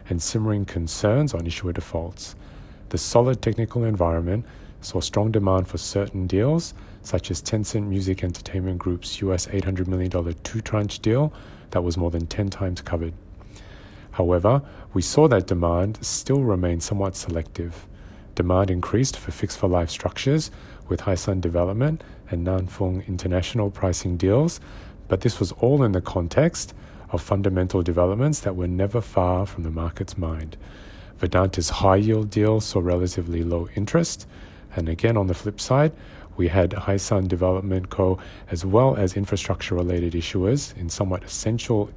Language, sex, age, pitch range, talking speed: English, male, 30-49, 90-105 Hz, 145 wpm